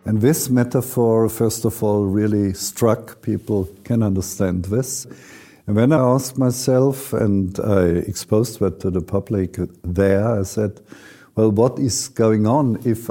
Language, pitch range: Swedish, 95-115 Hz